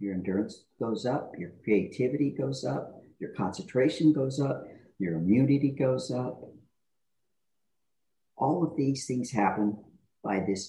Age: 50-69